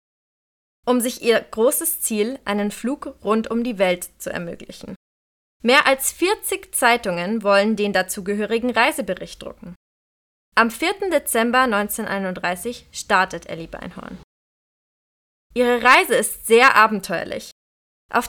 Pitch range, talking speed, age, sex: 205-275 Hz, 115 wpm, 20-39, female